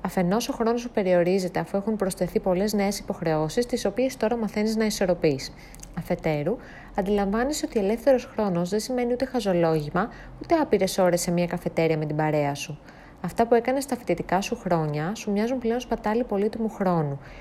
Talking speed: 170 wpm